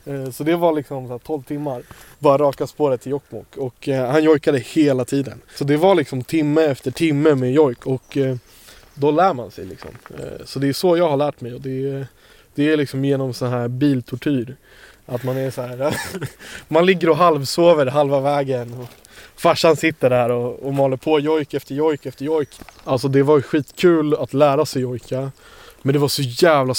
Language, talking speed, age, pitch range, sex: English, 195 wpm, 20-39, 125-150 Hz, male